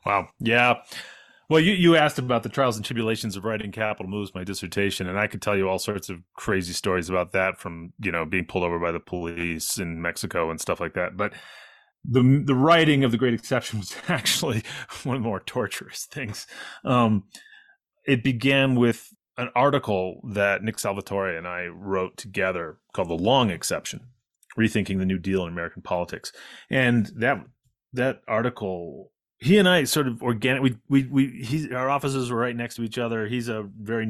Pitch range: 95-130 Hz